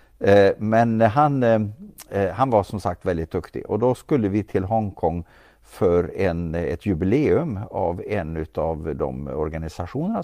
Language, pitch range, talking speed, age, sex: Swedish, 85-110 Hz, 135 wpm, 50-69, male